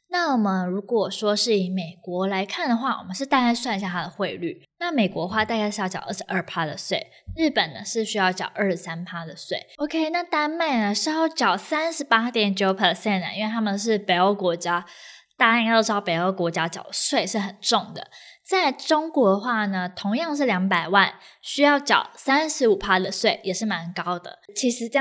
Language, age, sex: Chinese, 20-39, female